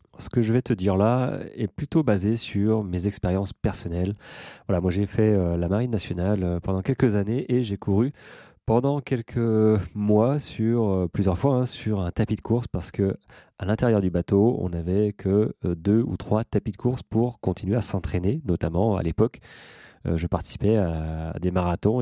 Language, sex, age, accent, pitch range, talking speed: French, male, 30-49, French, 90-115 Hz, 180 wpm